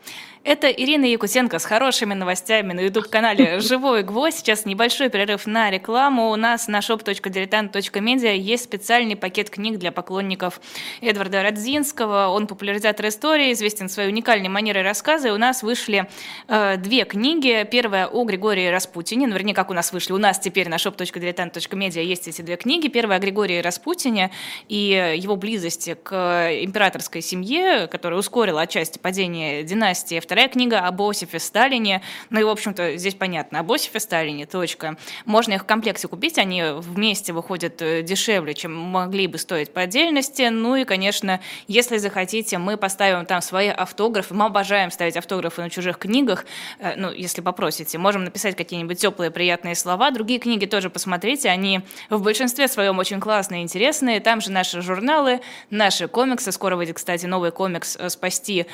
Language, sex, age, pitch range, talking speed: Russian, female, 20-39, 180-225 Hz, 160 wpm